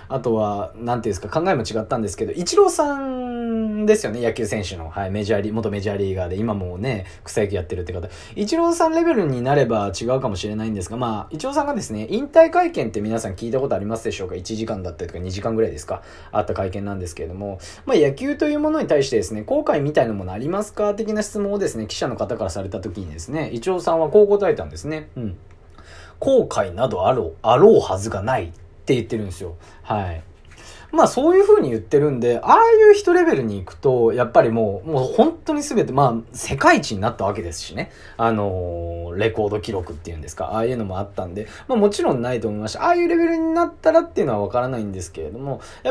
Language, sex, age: Japanese, male, 20-39